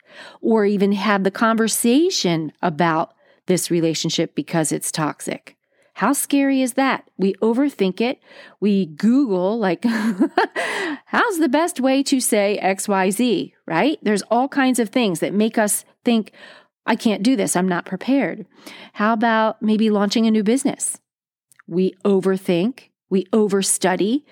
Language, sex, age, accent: English, female, 40-59, American